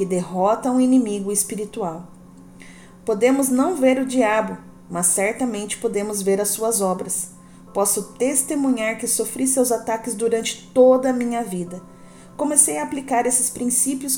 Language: Portuguese